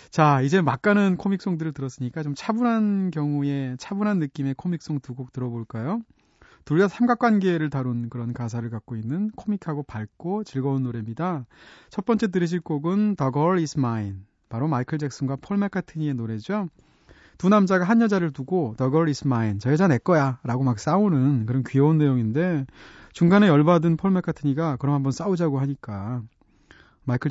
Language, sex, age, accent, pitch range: Korean, male, 30-49, native, 130-185 Hz